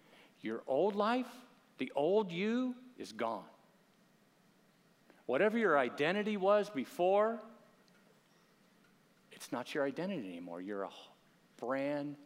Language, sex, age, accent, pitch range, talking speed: English, male, 50-69, American, 130-210 Hz, 105 wpm